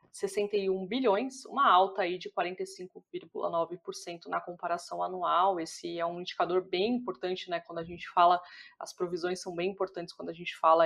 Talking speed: 165 wpm